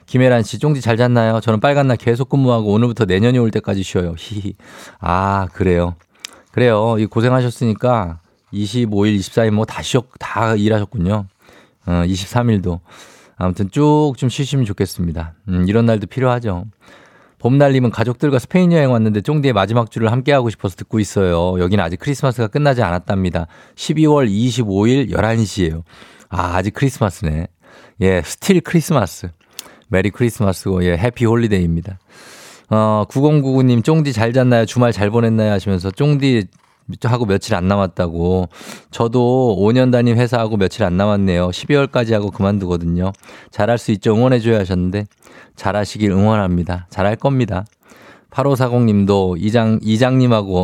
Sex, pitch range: male, 95-125 Hz